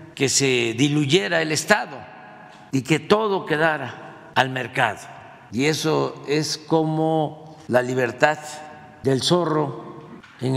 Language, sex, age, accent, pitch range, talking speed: Spanish, male, 50-69, Mexican, 115-150 Hz, 115 wpm